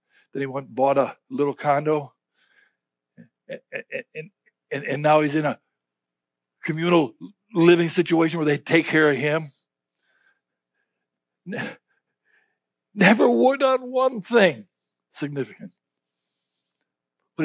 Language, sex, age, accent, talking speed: English, male, 60-79, American, 110 wpm